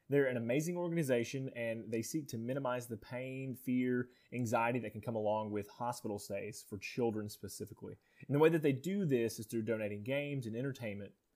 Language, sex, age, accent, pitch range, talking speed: English, male, 20-39, American, 110-140 Hz, 190 wpm